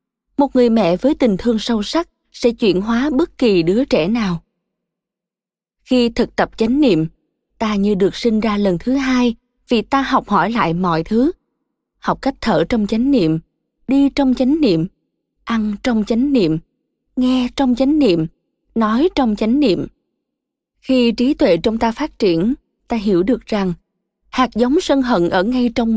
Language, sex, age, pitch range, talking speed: Vietnamese, female, 20-39, 205-260 Hz, 175 wpm